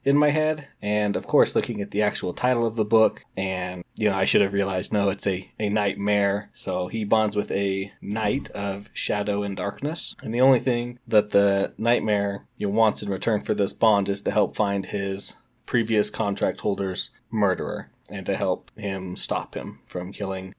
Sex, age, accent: male, 20-39, American